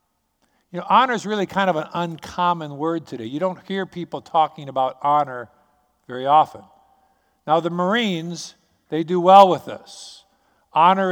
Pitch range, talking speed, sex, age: 150-190 Hz, 155 wpm, male, 50-69